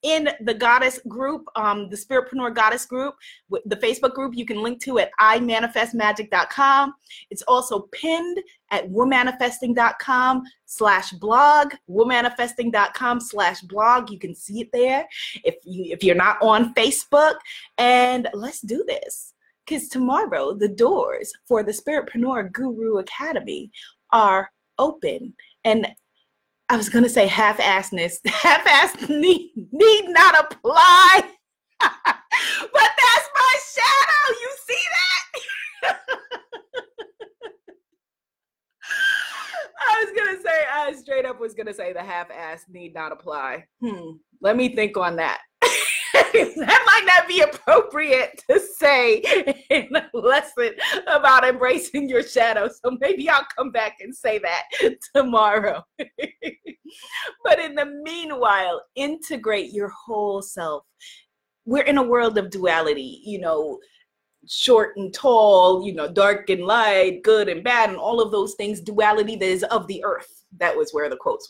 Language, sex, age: English, female, 20-39